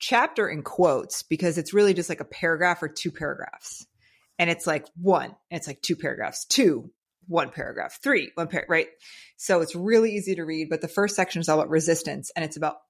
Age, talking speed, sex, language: 30-49, 210 wpm, female, English